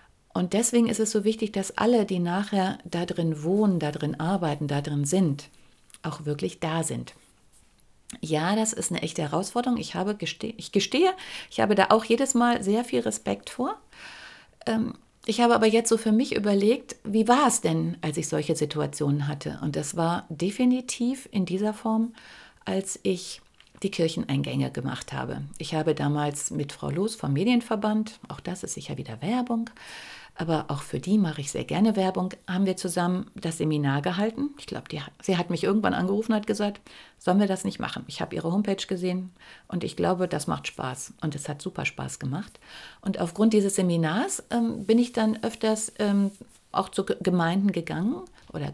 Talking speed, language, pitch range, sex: 180 wpm, German, 165-220 Hz, female